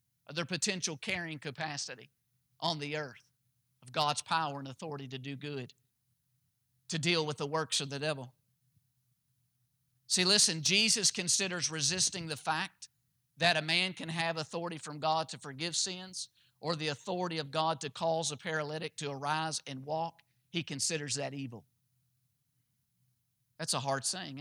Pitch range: 130-190 Hz